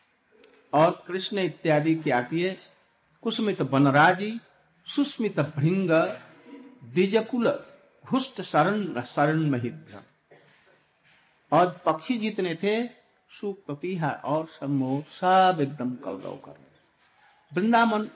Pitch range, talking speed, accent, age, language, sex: 150-205 Hz, 60 wpm, native, 60-79, Hindi, male